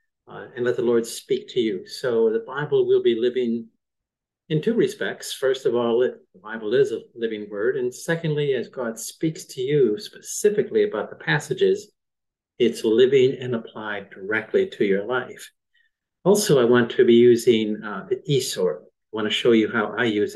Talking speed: 185 wpm